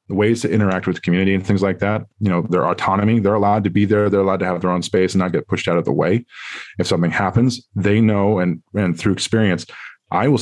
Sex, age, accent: male, 20-39, American